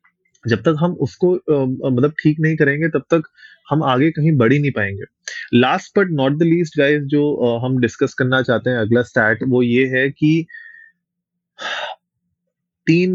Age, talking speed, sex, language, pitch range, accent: 20-39, 165 wpm, male, Hindi, 110-145 Hz, native